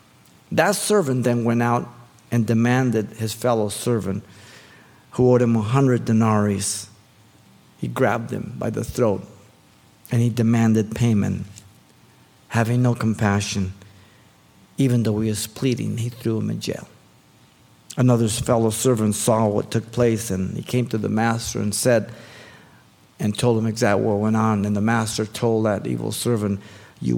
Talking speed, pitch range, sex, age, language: 150 wpm, 105-120 Hz, male, 50-69, English